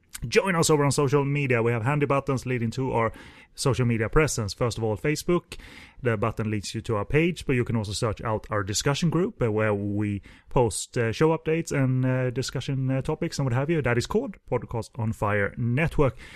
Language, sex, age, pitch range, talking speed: English, male, 30-49, 110-140 Hz, 200 wpm